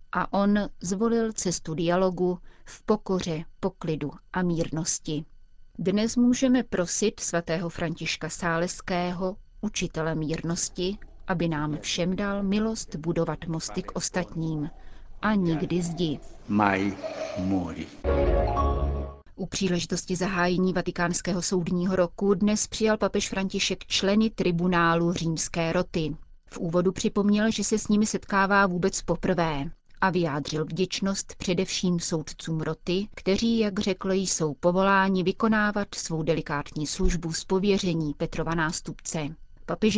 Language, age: Czech, 30-49